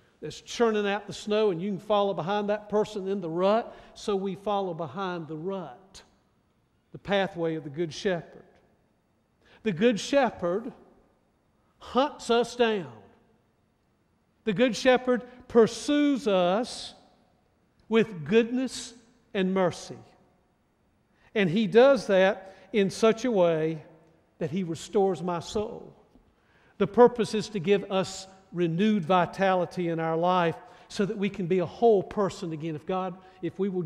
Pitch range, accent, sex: 180-220 Hz, American, male